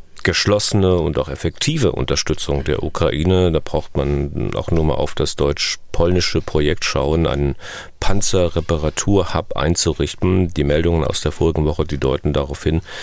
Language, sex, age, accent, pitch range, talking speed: German, male, 40-59, German, 75-95 Hz, 145 wpm